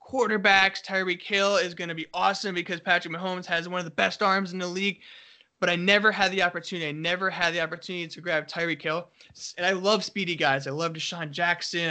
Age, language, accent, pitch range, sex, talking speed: 20-39, English, American, 160-190 Hz, male, 220 wpm